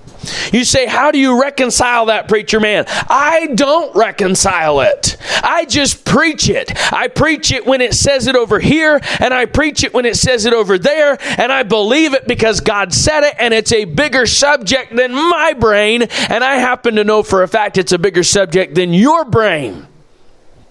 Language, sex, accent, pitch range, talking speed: English, male, American, 210-270 Hz, 195 wpm